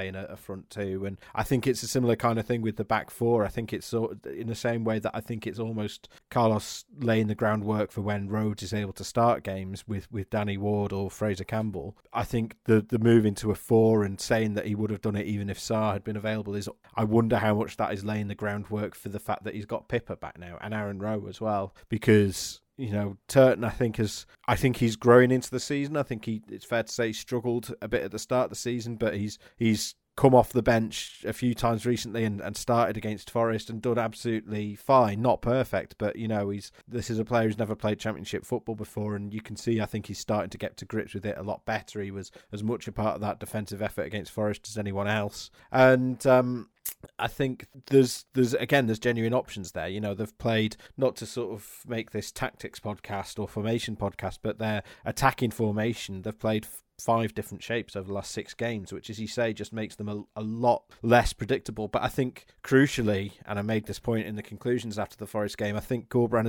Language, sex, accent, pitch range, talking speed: English, male, British, 105-115 Hz, 240 wpm